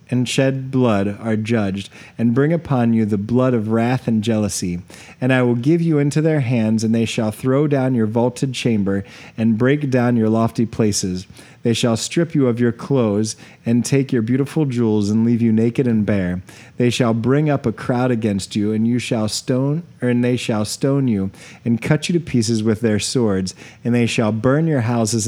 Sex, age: male, 30-49